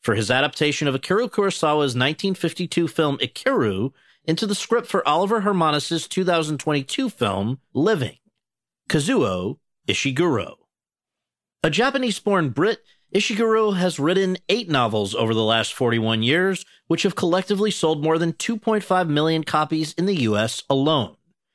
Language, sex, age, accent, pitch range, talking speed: English, male, 40-59, American, 120-180 Hz, 130 wpm